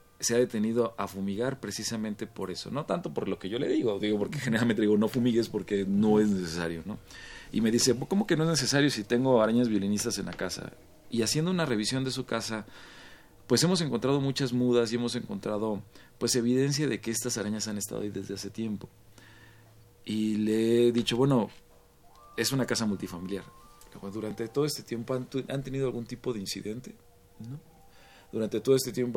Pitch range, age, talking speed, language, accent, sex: 100-120 Hz, 40-59, 195 wpm, Spanish, Mexican, male